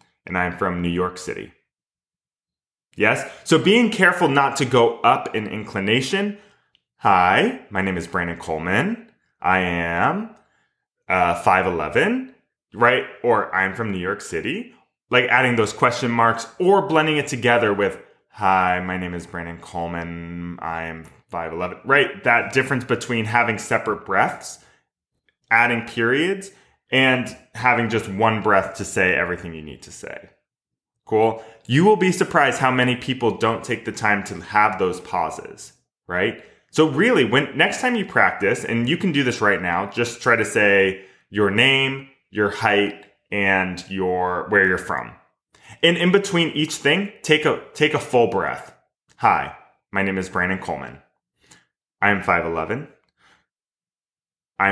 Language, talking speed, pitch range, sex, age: English, 150 wpm, 95-140 Hz, male, 20-39